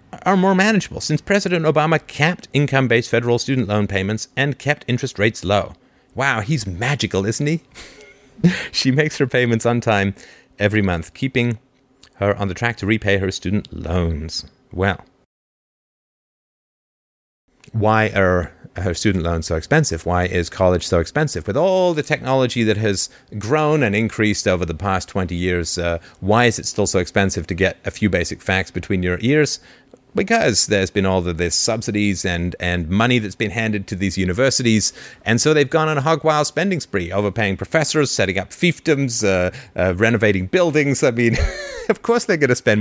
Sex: male